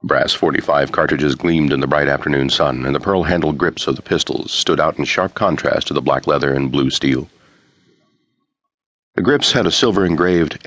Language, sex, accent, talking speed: English, male, American, 185 wpm